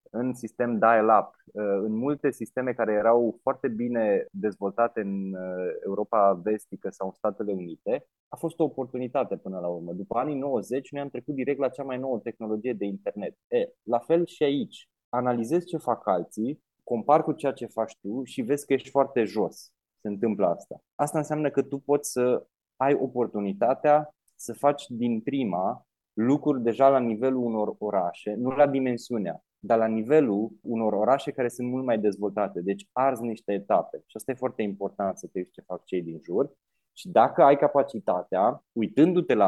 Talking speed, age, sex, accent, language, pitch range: 175 wpm, 20-39, male, native, Romanian, 105-140 Hz